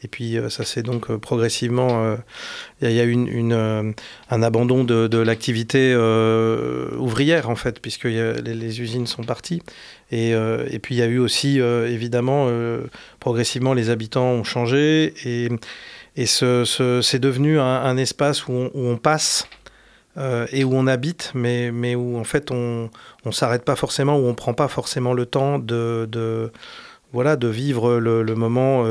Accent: French